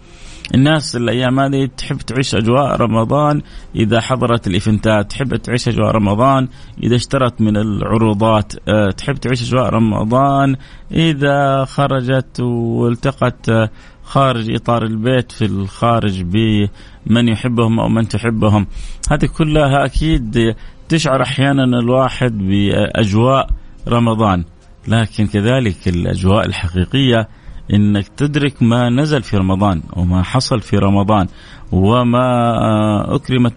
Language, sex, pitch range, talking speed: Arabic, male, 105-135 Hz, 105 wpm